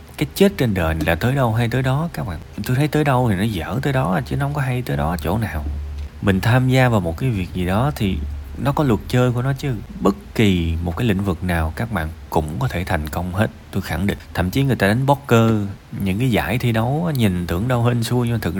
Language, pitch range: Vietnamese, 85-120 Hz